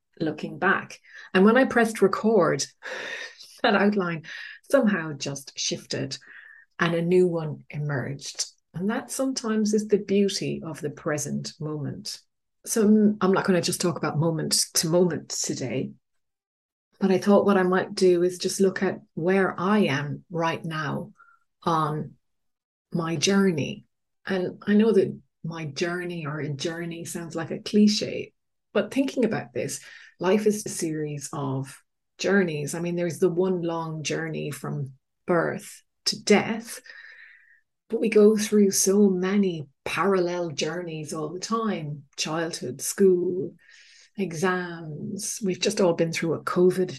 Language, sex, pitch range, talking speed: English, female, 160-205 Hz, 145 wpm